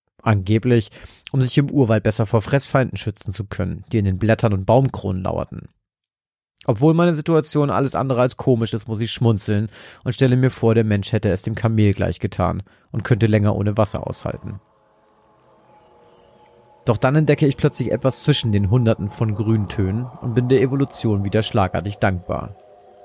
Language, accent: German, German